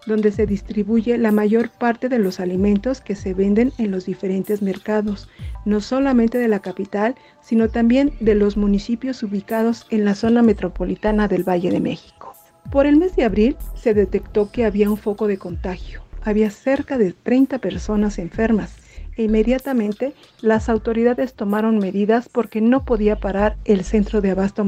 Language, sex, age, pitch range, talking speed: Spanish, female, 50-69, 200-230 Hz, 165 wpm